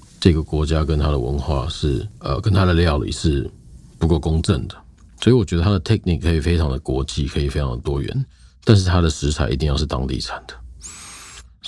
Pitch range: 75-100 Hz